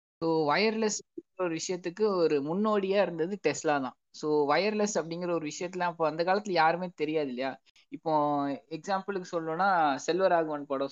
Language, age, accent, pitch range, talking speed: Tamil, 20-39, native, 140-180 Hz, 145 wpm